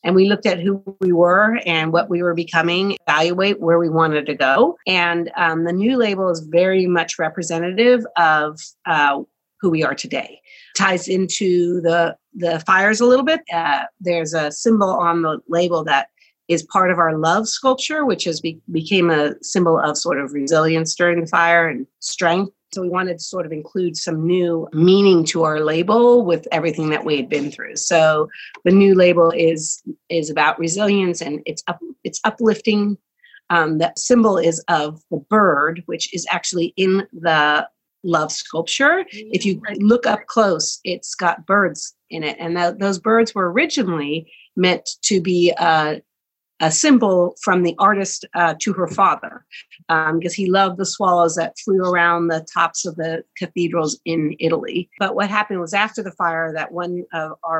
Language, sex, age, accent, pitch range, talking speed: English, female, 40-59, American, 165-195 Hz, 180 wpm